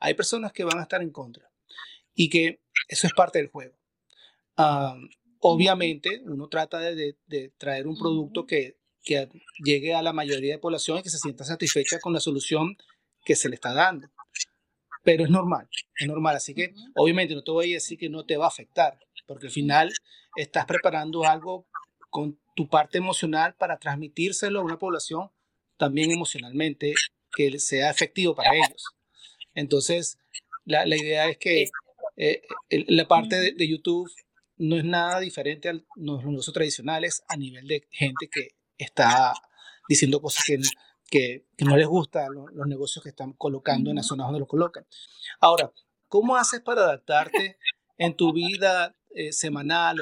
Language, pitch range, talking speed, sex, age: Spanish, 145-175 Hz, 170 wpm, male, 30-49